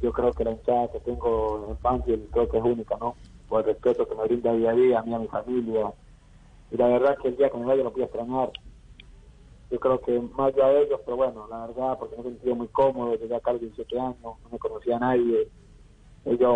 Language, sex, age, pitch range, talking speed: Spanish, male, 30-49, 115-135 Hz, 255 wpm